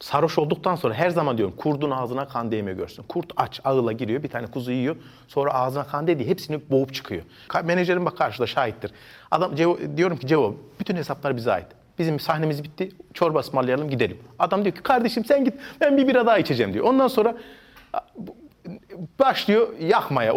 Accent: native